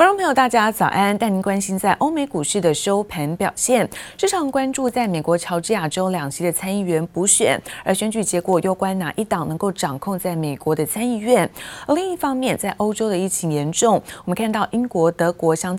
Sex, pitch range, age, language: female, 170-225 Hz, 30-49, Chinese